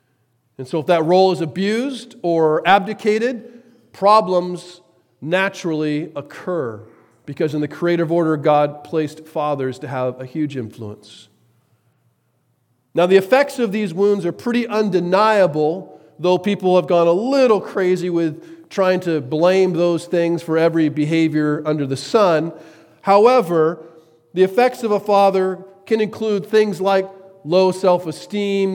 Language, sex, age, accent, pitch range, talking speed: English, male, 40-59, American, 160-210 Hz, 135 wpm